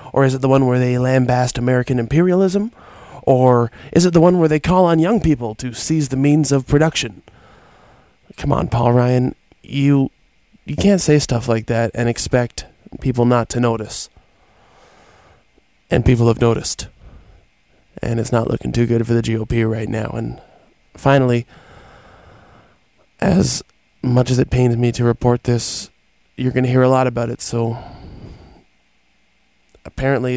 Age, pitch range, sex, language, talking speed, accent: 20-39, 115-130 Hz, male, English, 160 wpm, American